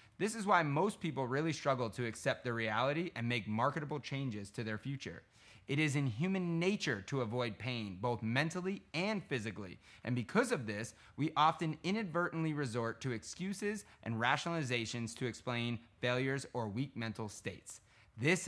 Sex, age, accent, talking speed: male, 30-49, American, 160 wpm